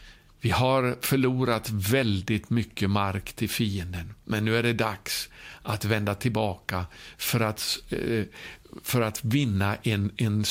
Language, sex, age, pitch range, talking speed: Swedish, male, 60-79, 105-125 Hz, 125 wpm